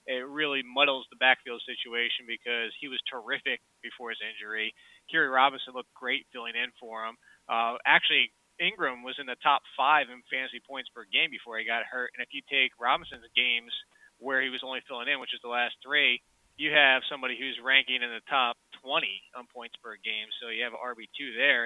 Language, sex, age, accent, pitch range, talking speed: English, male, 20-39, American, 125-145 Hz, 200 wpm